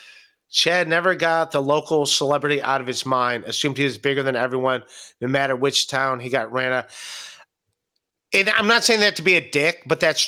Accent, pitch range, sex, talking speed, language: American, 140-185 Hz, male, 205 wpm, English